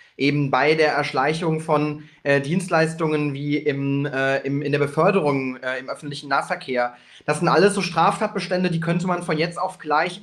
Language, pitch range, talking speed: German, 155-195 Hz, 175 wpm